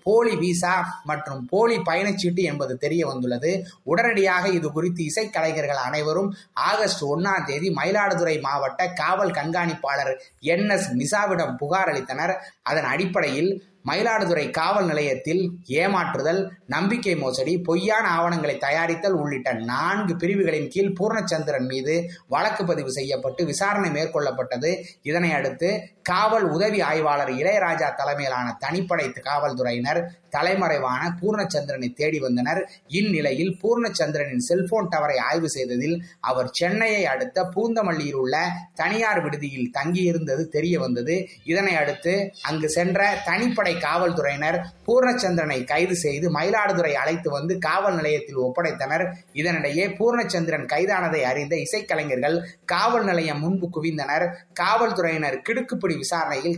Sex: male